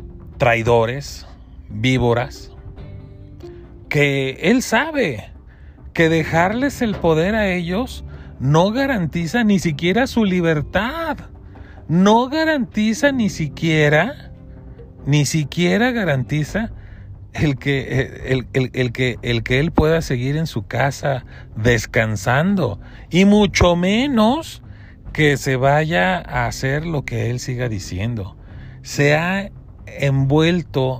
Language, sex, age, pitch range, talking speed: Spanish, male, 40-59, 120-175 Hz, 105 wpm